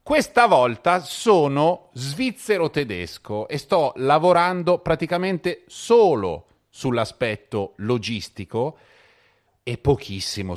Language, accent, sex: Italian, native, male